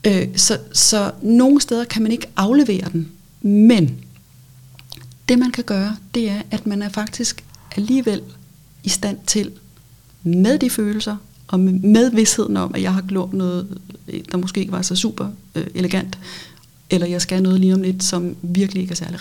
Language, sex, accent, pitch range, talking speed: Danish, female, native, 180-220 Hz, 170 wpm